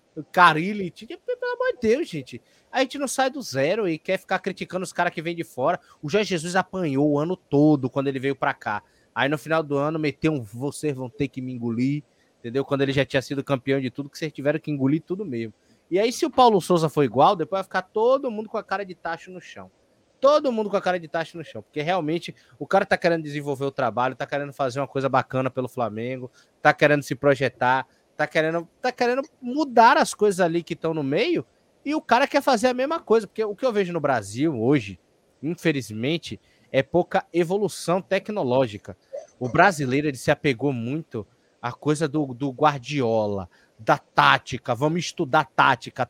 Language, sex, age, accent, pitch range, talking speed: Portuguese, male, 20-39, Brazilian, 135-190 Hz, 210 wpm